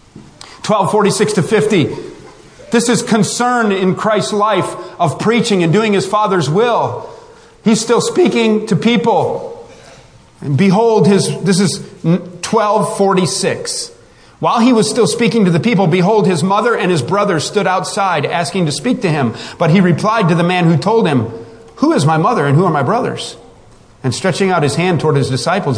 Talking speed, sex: 165 wpm, male